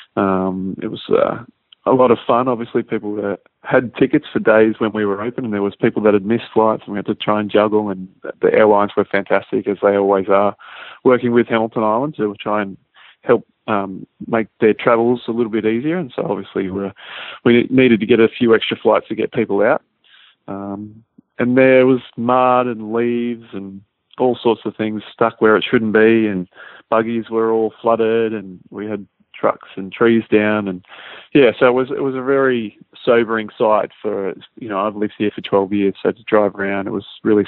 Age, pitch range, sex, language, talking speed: 20-39, 100-120 Hz, male, English, 205 wpm